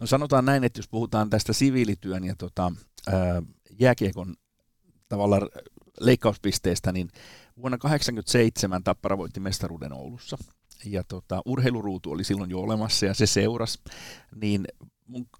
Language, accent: Finnish, native